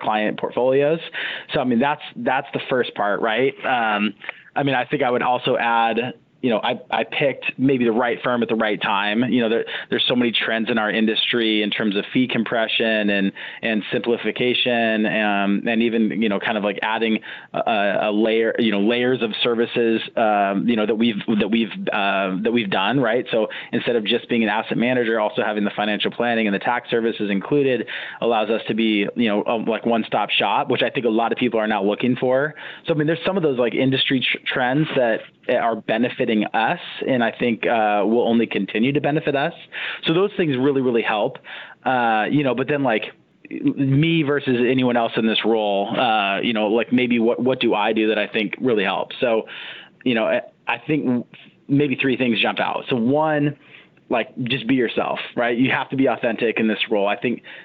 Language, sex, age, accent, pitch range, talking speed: English, male, 20-39, American, 110-130 Hz, 215 wpm